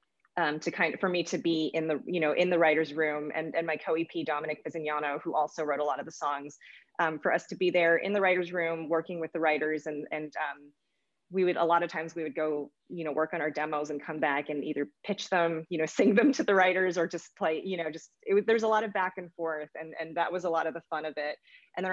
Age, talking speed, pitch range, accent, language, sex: 20-39, 280 wpm, 155-180 Hz, American, English, female